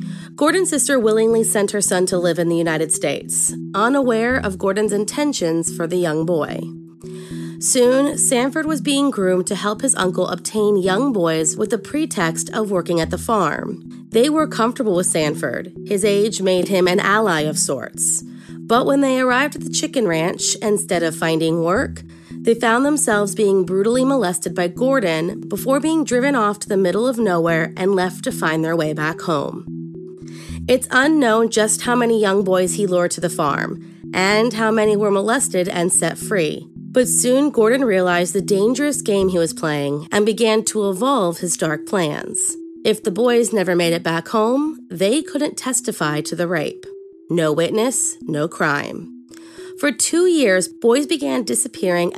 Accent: American